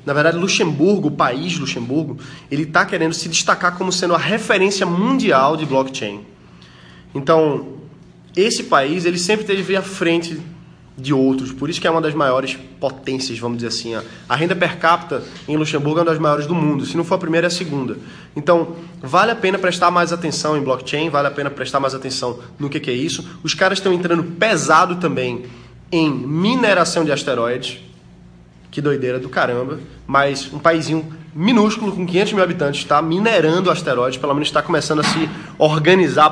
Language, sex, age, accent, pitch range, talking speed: Portuguese, male, 20-39, Brazilian, 140-175 Hz, 180 wpm